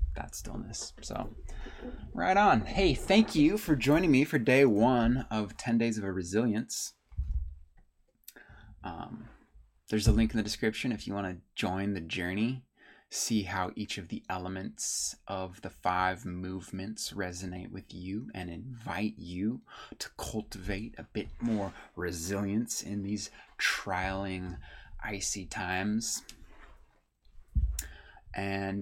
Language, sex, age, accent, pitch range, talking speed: English, male, 20-39, American, 90-110 Hz, 130 wpm